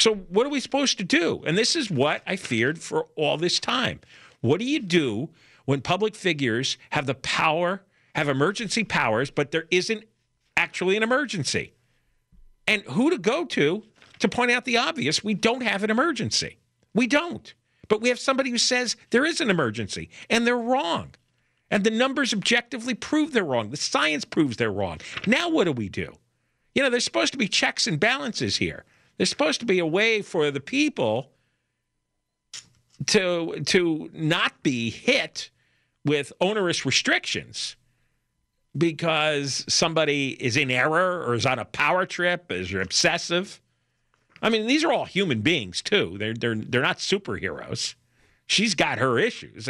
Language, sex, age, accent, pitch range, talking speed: English, male, 50-69, American, 140-230 Hz, 170 wpm